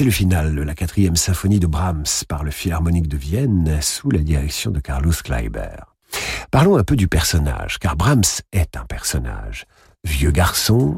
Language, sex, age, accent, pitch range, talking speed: French, male, 50-69, French, 85-125 Hz, 175 wpm